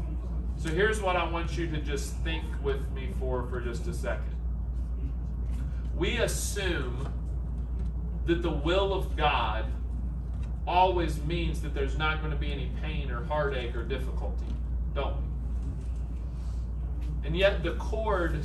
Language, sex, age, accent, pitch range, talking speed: English, male, 40-59, American, 65-85 Hz, 140 wpm